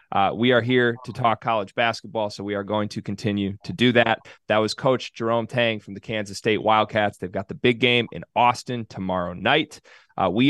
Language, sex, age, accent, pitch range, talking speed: English, male, 30-49, American, 105-145 Hz, 215 wpm